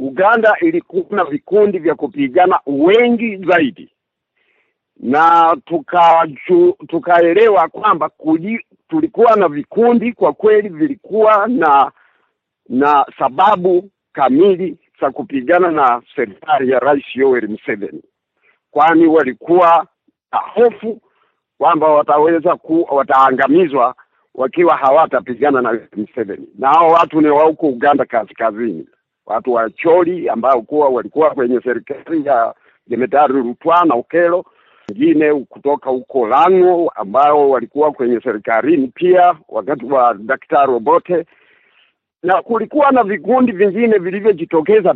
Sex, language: male, Swahili